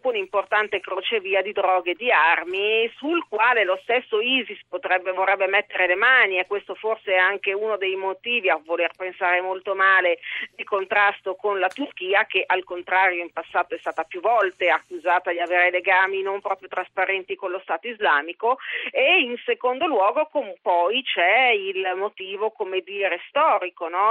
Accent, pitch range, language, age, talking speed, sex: native, 185-230 Hz, Italian, 40-59, 170 wpm, female